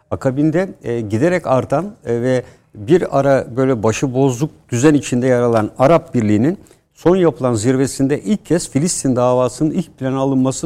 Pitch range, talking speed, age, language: 125-150 Hz, 135 wpm, 60-79, Turkish